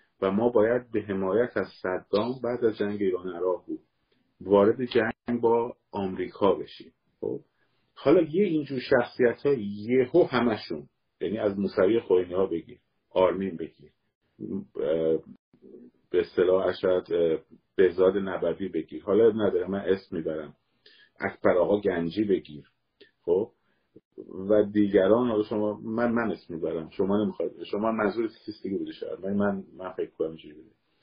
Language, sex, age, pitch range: Persian, male, 50-69, 95-135 Hz